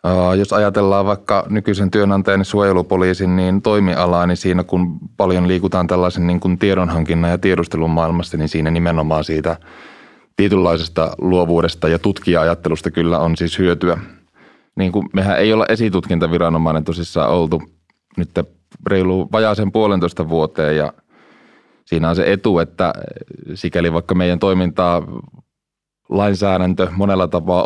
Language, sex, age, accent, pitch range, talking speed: Finnish, male, 20-39, native, 85-100 Hz, 120 wpm